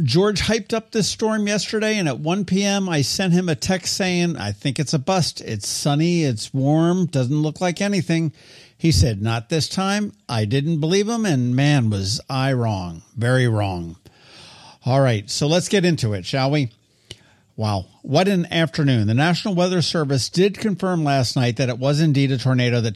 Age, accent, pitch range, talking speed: 50-69, American, 120-165 Hz, 190 wpm